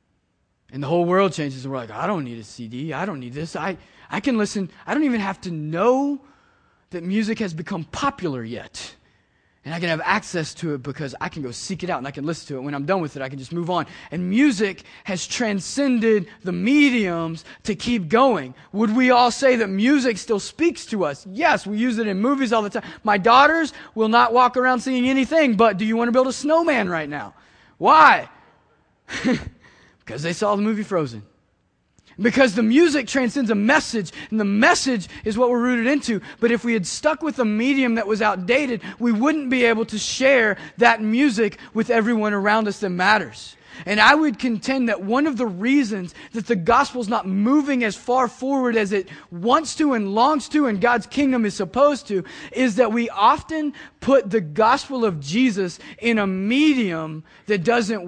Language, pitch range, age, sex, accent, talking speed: English, 180-250 Hz, 20-39, male, American, 205 wpm